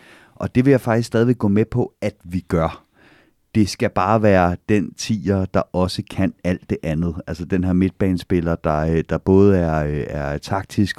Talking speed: 185 wpm